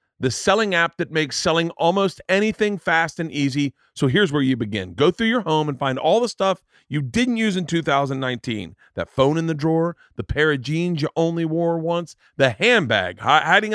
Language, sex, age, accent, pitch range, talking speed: English, male, 40-59, American, 120-165 Hz, 200 wpm